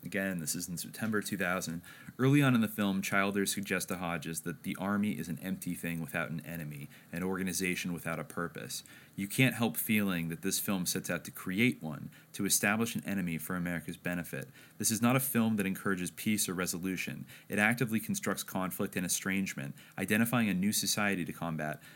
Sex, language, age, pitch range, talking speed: male, English, 30-49, 85-105 Hz, 195 wpm